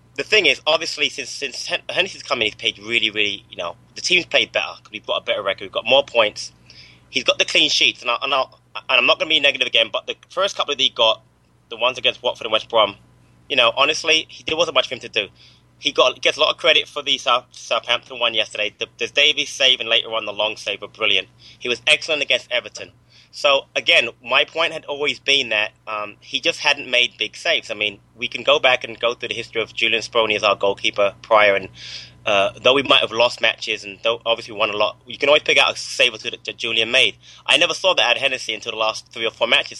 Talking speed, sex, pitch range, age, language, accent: 260 wpm, male, 105-145 Hz, 20-39, English, British